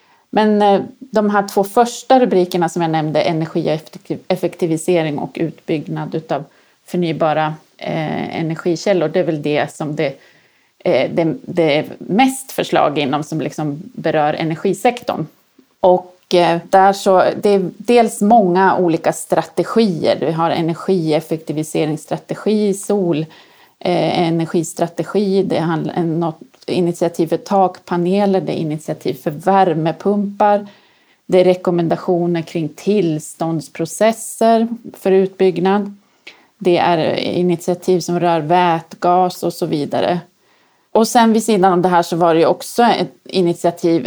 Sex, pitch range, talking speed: female, 165-195 Hz, 110 wpm